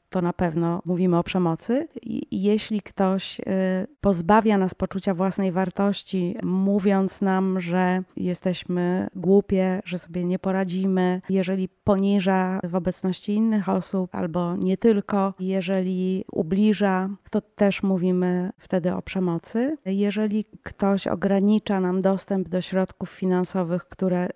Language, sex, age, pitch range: Polish, female, 30-49, 185-200 Hz